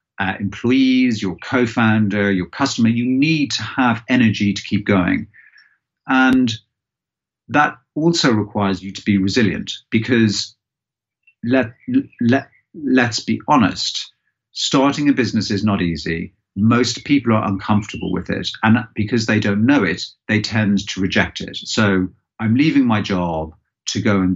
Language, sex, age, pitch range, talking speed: English, male, 50-69, 95-120 Hz, 145 wpm